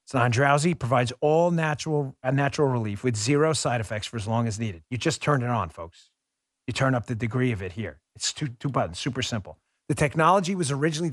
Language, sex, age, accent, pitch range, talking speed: English, male, 40-59, American, 110-145 Hz, 220 wpm